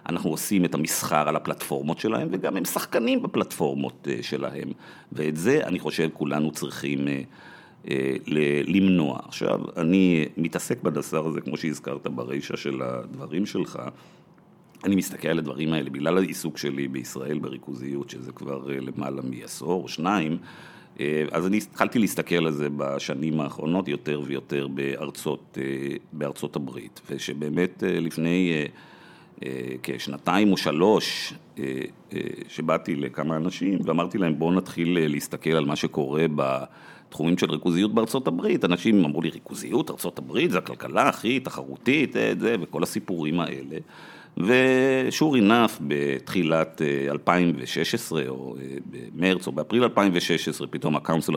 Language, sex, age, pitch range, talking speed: Hebrew, male, 50-69, 70-90 Hz, 125 wpm